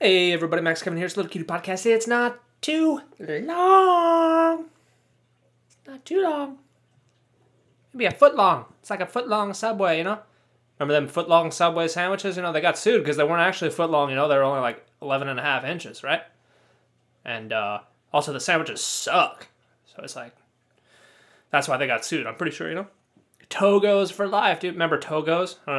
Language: English